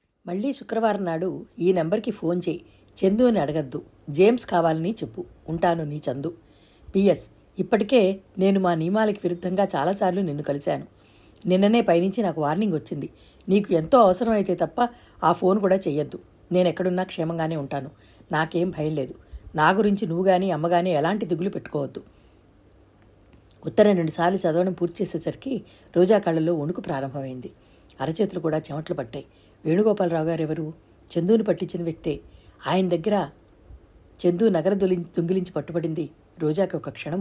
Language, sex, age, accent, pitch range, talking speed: Telugu, female, 60-79, native, 150-190 Hz, 135 wpm